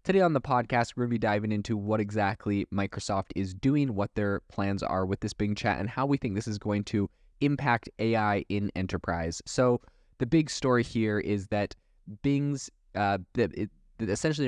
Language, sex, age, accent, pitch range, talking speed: English, male, 20-39, American, 95-115 Hz, 185 wpm